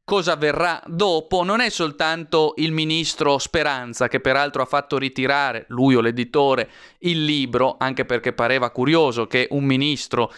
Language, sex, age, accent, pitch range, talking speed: Italian, male, 30-49, native, 130-160 Hz, 150 wpm